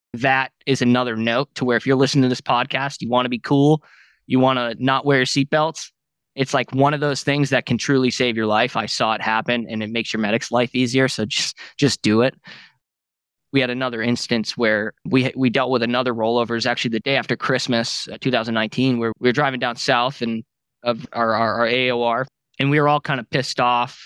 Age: 20-39